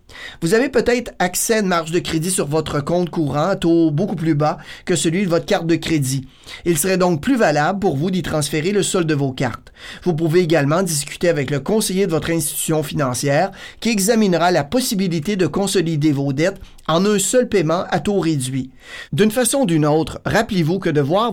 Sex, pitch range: male, 150-195 Hz